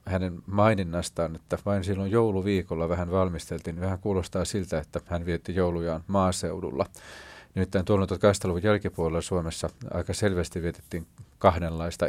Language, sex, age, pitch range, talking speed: Finnish, male, 40-59, 85-95 Hz, 125 wpm